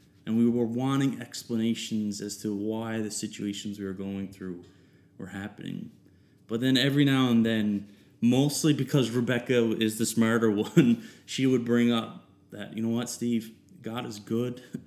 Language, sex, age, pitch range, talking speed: English, male, 20-39, 100-115 Hz, 165 wpm